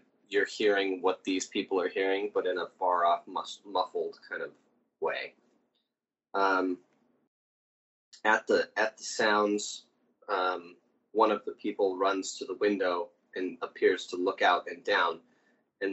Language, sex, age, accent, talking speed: English, male, 20-39, American, 150 wpm